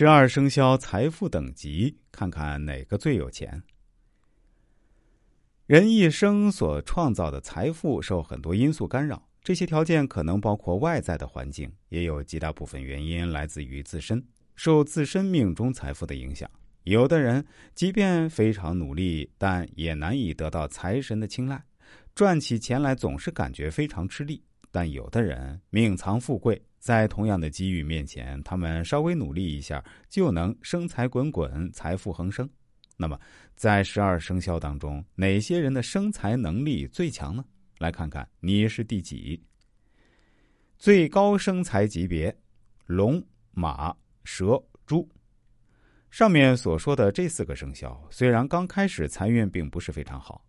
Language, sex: Chinese, male